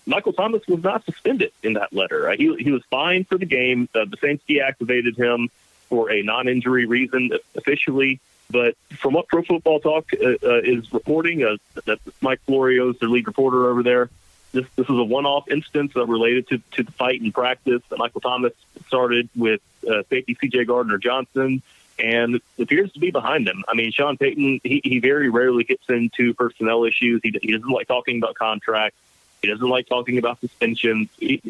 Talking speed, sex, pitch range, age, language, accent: 190 wpm, male, 120-140 Hz, 40-59, English, American